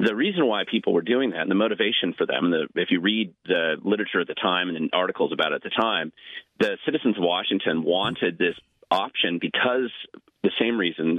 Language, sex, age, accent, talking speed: English, male, 40-59, American, 215 wpm